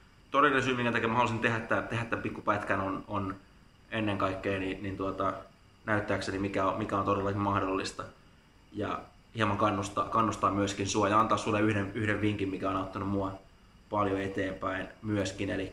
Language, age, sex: Finnish, 20-39, male